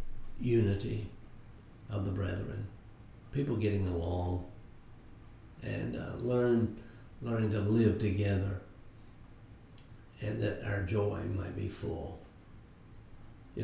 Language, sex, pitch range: English, male, 100-115 Hz